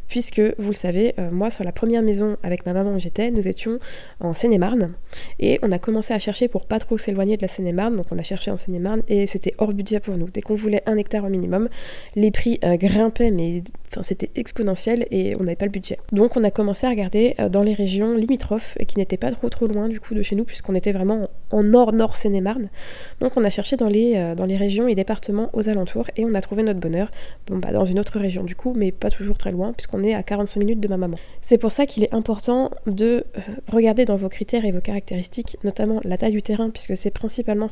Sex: female